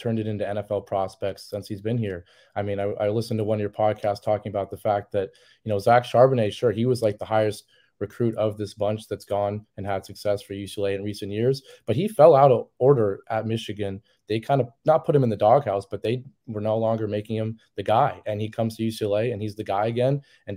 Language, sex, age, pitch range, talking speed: English, male, 30-49, 100-115 Hz, 250 wpm